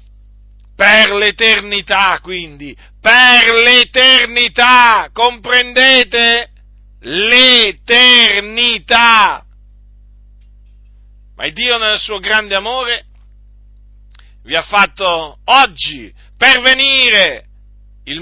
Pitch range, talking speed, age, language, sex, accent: 165-255 Hz, 65 wpm, 50-69, Italian, male, native